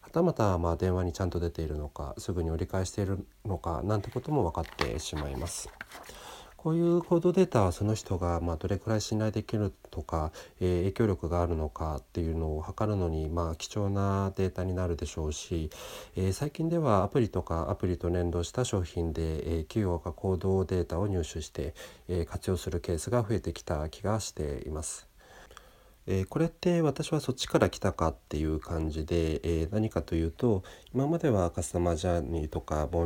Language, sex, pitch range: Japanese, male, 80-100 Hz